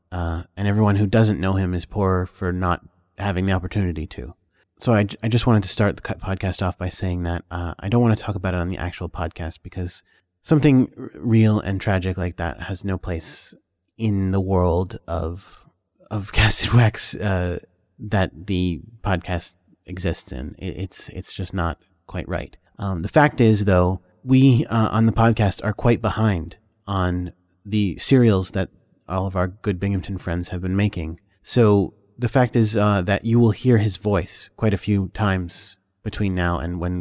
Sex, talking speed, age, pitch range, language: male, 190 wpm, 30-49, 90-110 Hz, English